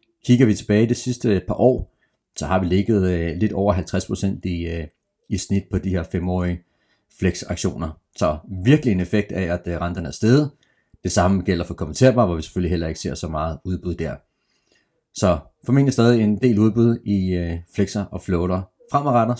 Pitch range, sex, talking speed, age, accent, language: 90-115 Hz, male, 175 wpm, 30-49, native, Danish